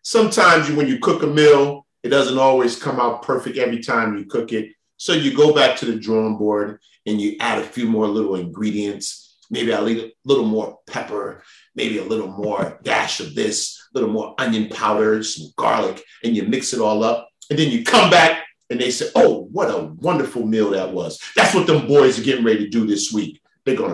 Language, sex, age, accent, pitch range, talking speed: English, male, 40-59, American, 105-130 Hz, 220 wpm